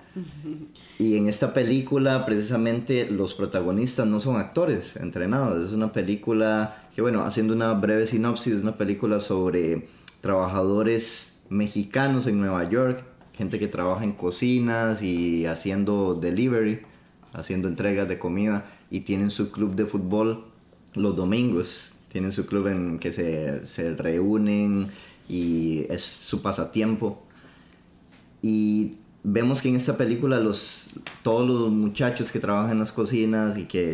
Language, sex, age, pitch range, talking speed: Spanish, male, 20-39, 90-110 Hz, 140 wpm